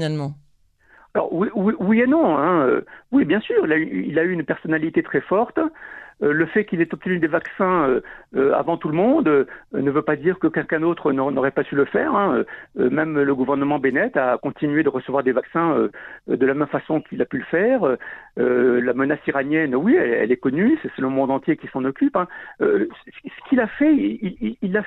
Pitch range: 150-240 Hz